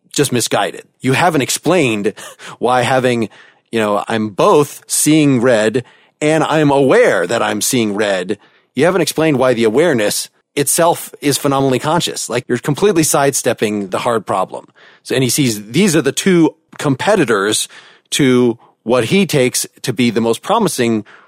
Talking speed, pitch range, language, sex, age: 155 wpm, 115-150 Hz, English, male, 30-49